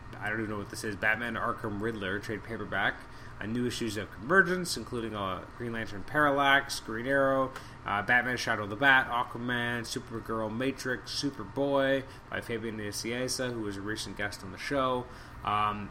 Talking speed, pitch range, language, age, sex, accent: 175 wpm, 105-130 Hz, English, 20-39, male, American